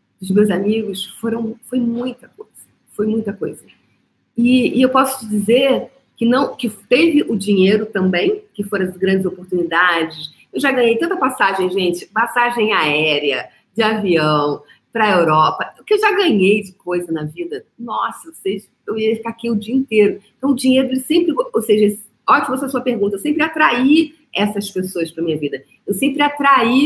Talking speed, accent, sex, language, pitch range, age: 180 wpm, Brazilian, female, Portuguese, 190-255 Hz, 40-59